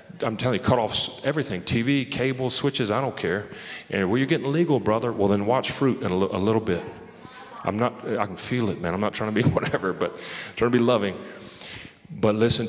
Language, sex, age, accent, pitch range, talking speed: English, male, 40-59, American, 105-125 Hz, 230 wpm